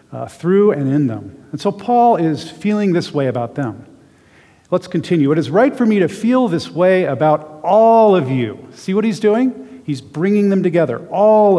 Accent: American